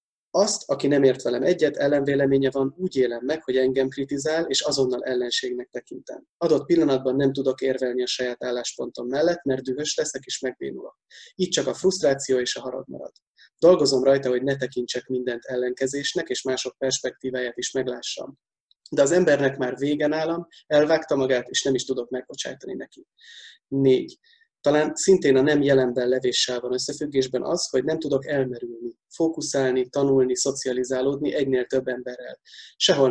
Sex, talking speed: male, 160 wpm